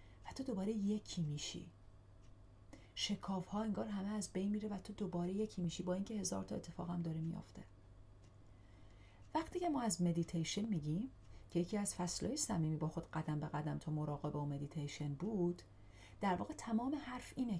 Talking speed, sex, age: 165 wpm, female, 40-59